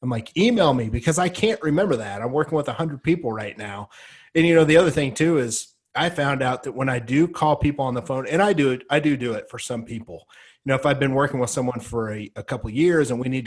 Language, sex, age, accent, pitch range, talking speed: English, male, 30-49, American, 115-145 Hz, 280 wpm